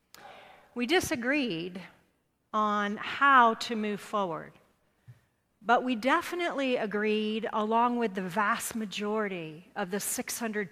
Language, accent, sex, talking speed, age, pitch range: English, American, female, 105 wpm, 40-59, 190-240 Hz